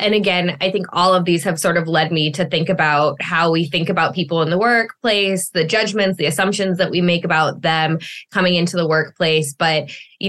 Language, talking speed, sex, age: English, 220 wpm, female, 20-39